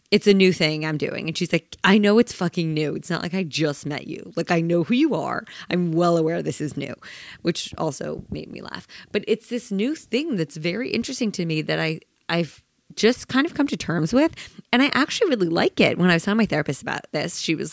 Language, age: English, 20-39